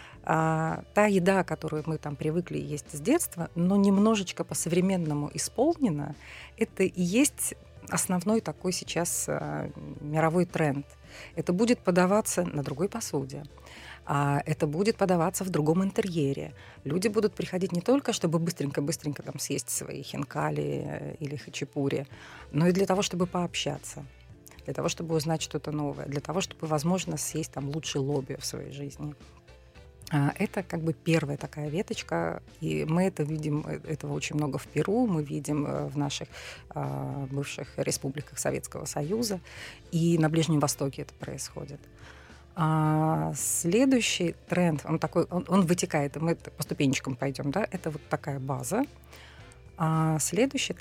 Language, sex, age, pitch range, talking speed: Russian, female, 30-49, 145-185 Hz, 140 wpm